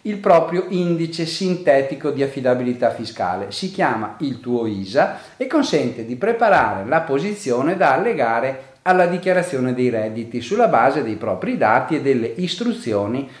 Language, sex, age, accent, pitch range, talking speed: Italian, male, 40-59, native, 120-185 Hz, 145 wpm